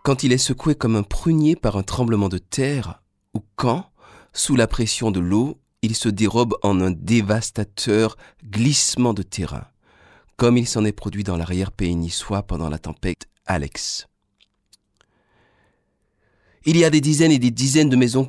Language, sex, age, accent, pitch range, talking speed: French, male, 40-59, French, 95-125 Hz, 165 wpm